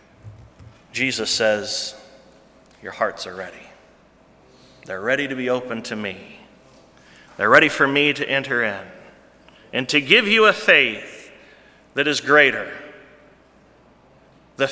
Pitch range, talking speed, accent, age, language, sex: 125-175 Hz, 120 wpm, American, 30-49, English, male